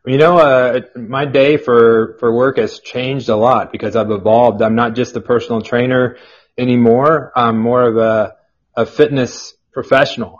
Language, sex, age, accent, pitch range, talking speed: English, male, 30-49, American, 115-130 Hz, 165 wpm